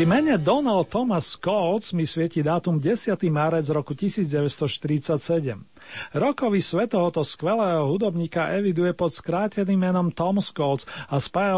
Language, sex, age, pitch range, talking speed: Slovak, male, 40-59, 150-195 Hz, 130 wpm